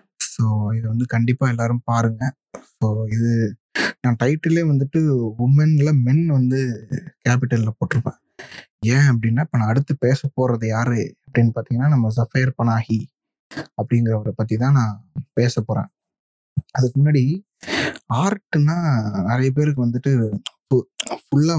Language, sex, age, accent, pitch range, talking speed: Tamil, male, 20-39, native, 115-145 Hz, 115 wpm